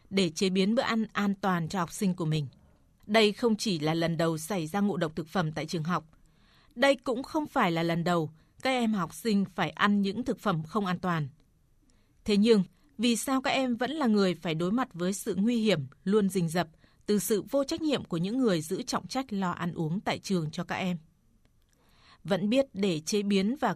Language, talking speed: Vietnamese, 225 wpm